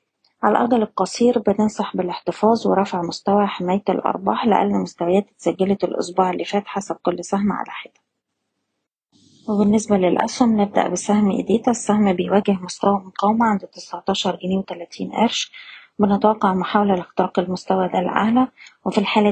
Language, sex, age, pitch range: Arabic, female, 20-39, 185-210 Hz